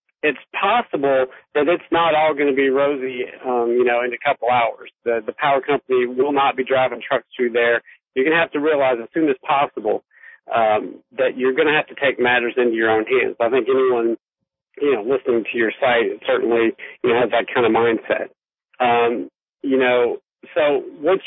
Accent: American